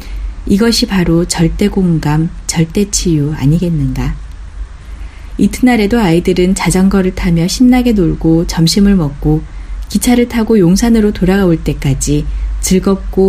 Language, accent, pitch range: Korean, native, 160-215 Hz